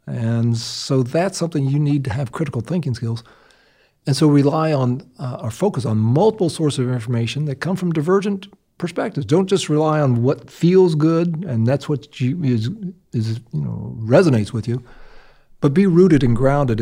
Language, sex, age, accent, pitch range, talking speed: English, male, 50-69, American, 115-150 Hz, 180 wpm